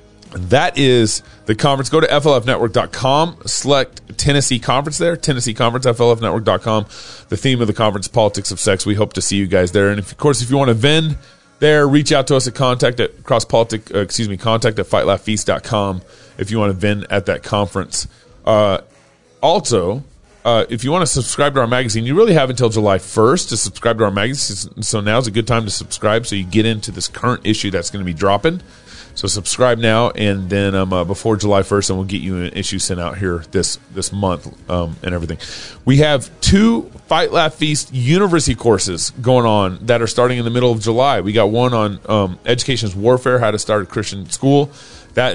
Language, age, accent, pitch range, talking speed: English, 30-49, American, 95-125 Hz, 215 wpm